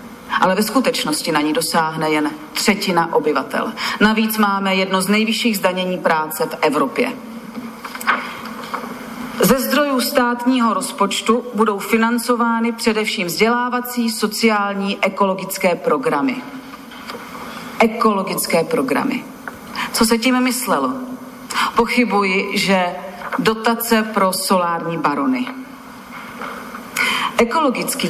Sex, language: female, Slovak